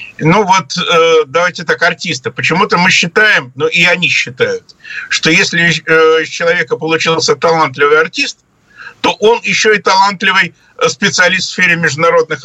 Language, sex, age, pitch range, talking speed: Russian, male, 50-69, 160-235 Hz, 135 wpm